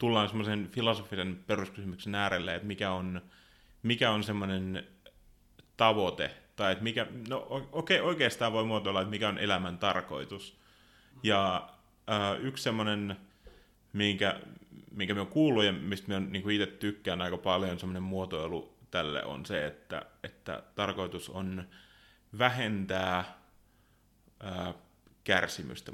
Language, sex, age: Finnish, male, 30-49